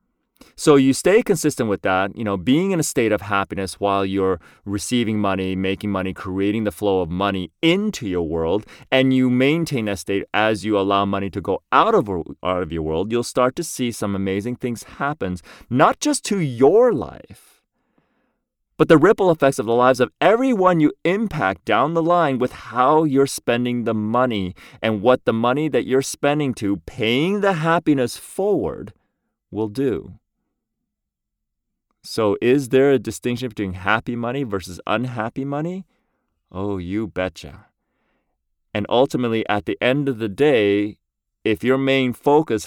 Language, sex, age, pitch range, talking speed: English, male, 30-49, 100-135 Hz, 165 wpm